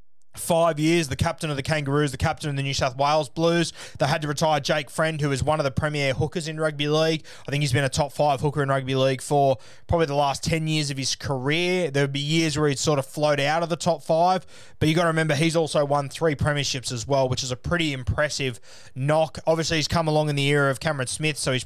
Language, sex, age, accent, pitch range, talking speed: English, male, 20-39, Australian, 135-160 Hz, 265 wpm